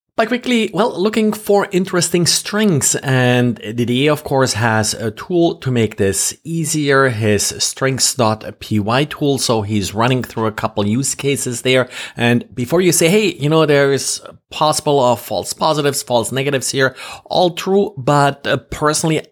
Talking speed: 160 wpm